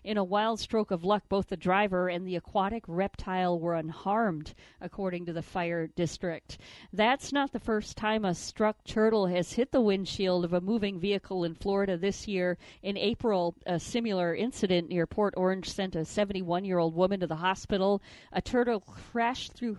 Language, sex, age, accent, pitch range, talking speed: English, female, 50-69, American, 180-215 Hz, 180 wpm